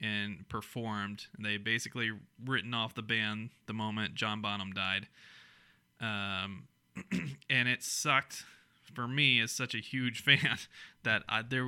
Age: 20-39